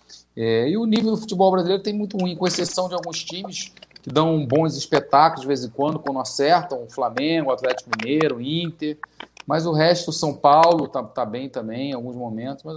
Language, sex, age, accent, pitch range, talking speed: Portuguese, male, 40-59, Brazilian, 145-210 Hz, 215 wpm